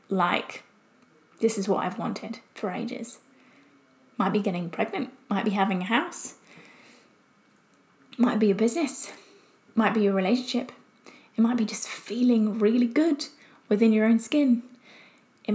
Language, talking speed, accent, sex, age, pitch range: English, 145 wpm, British, female, 20-39, 215-260 Hz